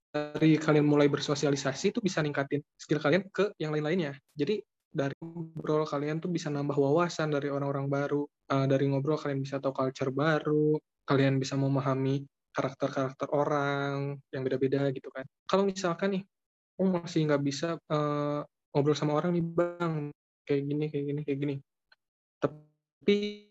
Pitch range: 135-155 Hz